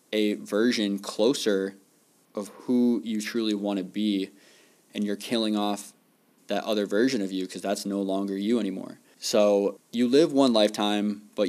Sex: male